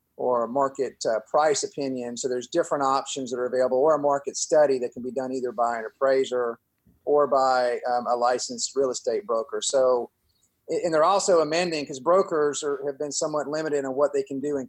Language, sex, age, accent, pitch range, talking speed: English, male, 40-59, American, 125-155 Hz, 205 wpm